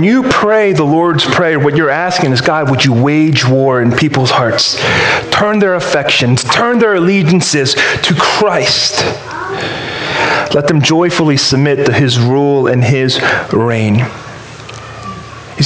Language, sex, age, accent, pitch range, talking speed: English, male, 40-59, American, 120-155 Hz, 140 wpm